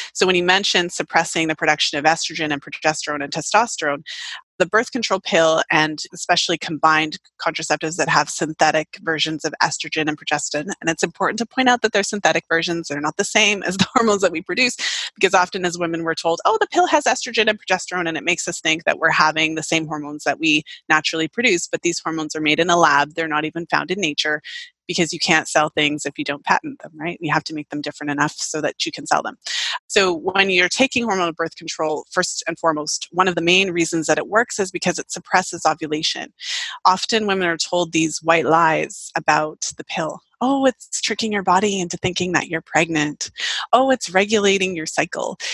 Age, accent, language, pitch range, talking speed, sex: 30-49, American, English, 155-195 Hz, 215 wpm, female